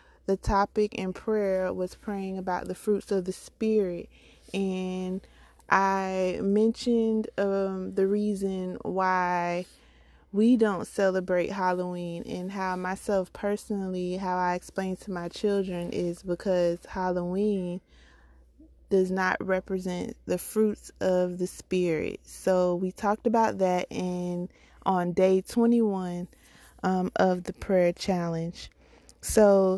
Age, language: 20-39, English